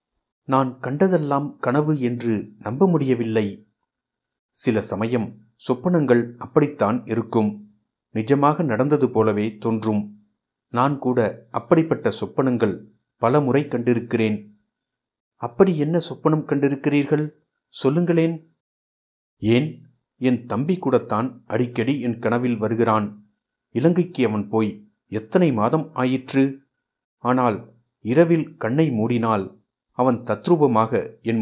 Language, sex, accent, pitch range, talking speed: Tamil, male, native, 110-140 Hz, 90 wpm